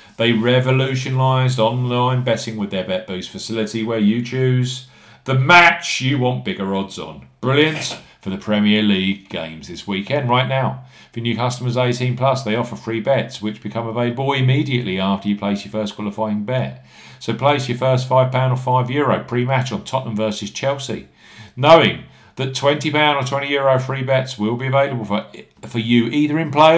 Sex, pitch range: male, 110-135 Hz